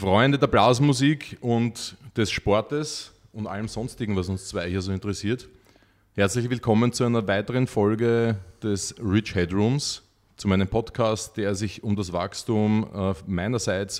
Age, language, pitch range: 30-49, German, 95-115 Hz